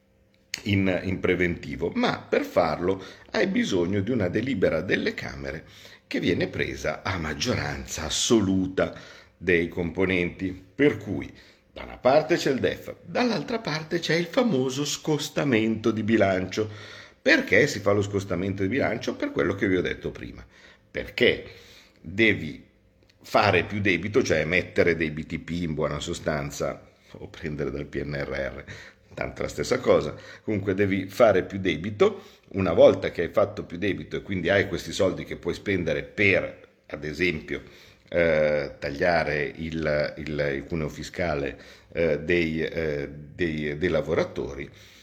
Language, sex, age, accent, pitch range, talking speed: Italian, male, 50-69, native, 75-105 Hz, 140 wpm